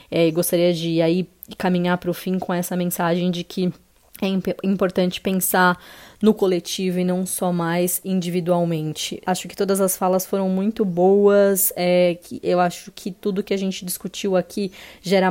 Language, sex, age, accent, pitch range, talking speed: Portuguese, female, 20-39, Brazilian, 175-205 Hz, 170 wpm